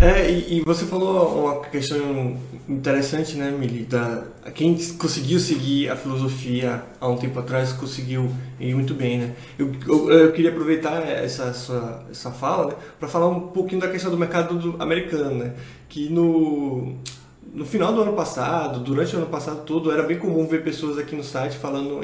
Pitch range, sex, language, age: 140-175 Hz, male, Portuguese, 20-39